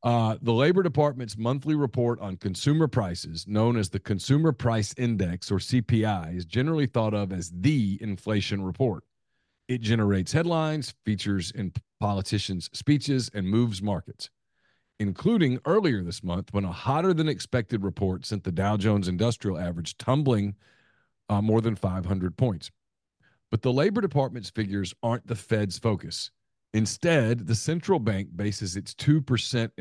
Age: 40-59